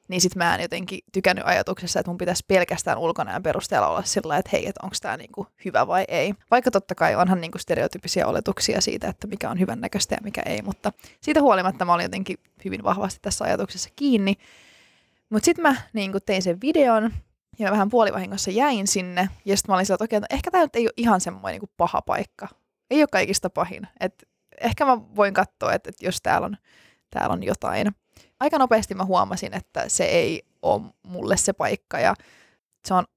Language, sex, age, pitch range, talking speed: Finnish, female, 20-39, 180-215 Hz, 200 wpm